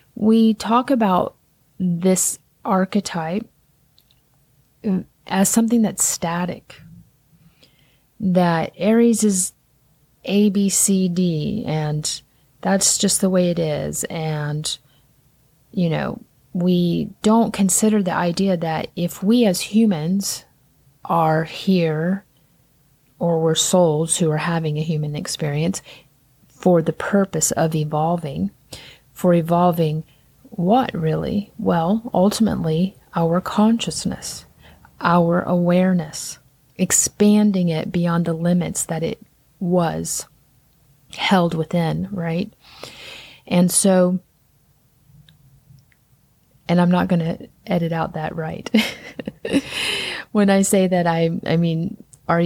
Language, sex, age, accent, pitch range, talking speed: English, female, 30-49, American, 150-190 Hz, 105 wpm